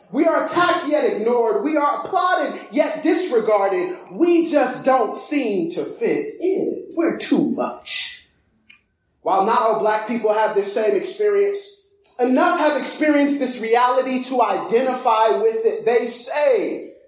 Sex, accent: male, American